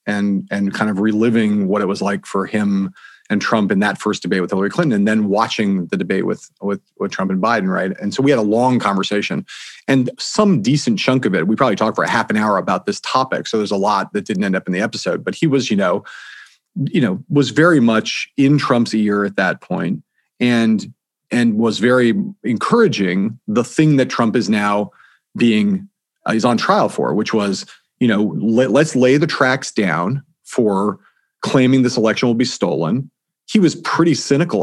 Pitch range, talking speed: 105-140 Hz, 210 wpm